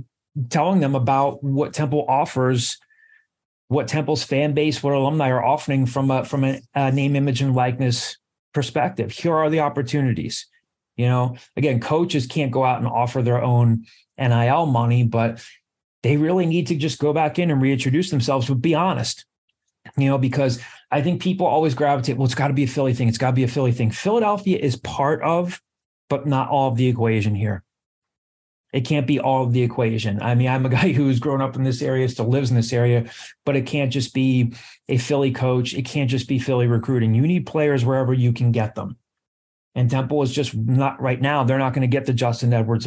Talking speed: 210 wpm